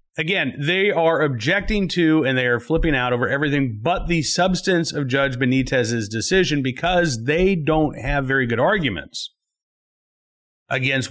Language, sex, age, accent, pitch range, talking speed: English, male, 40-59, American, 120-160 Hz, 145 wpm